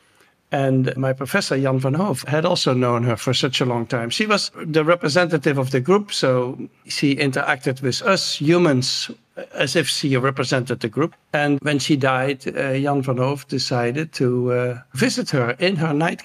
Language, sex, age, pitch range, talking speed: English, male, 60-79, 130-155 Hz, 185 wpm